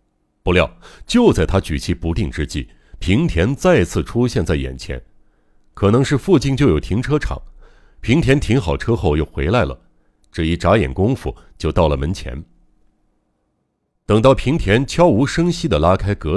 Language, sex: Chinese, male